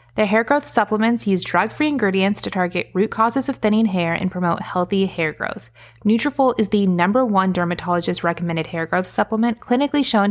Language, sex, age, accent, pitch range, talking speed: English, female, 20-39, American, 180-225 Hz, 180 wpm